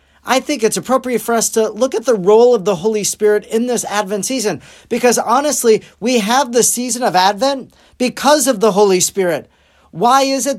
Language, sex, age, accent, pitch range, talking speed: English, male, 40-59, American, 195-245 Hz, 200 wpm